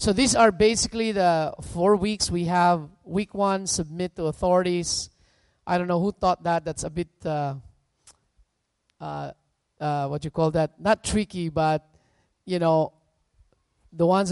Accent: Filipino